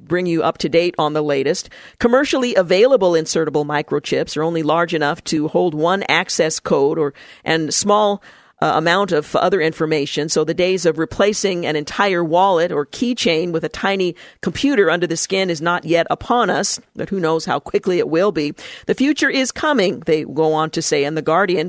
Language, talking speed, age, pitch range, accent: English, 200 wpm, 50-69, 160-205 Hz, American